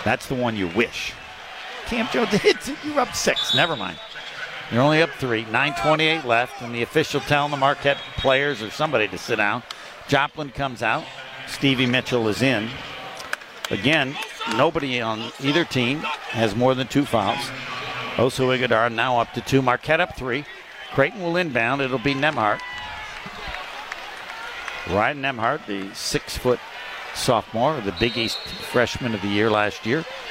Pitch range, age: 120-155 Hz, 60-79